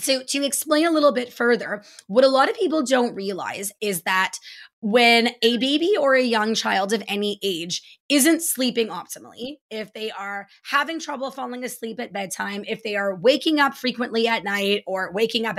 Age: 20-39